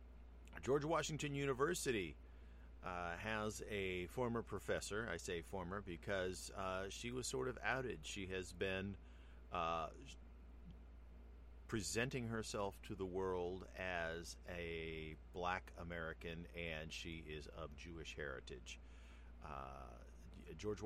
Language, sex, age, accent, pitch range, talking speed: English, male, 40-59, American, 75-105 Hz, 110 wpm